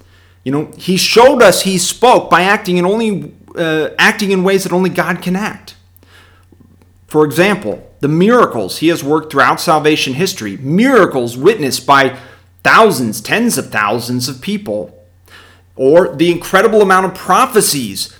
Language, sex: English, male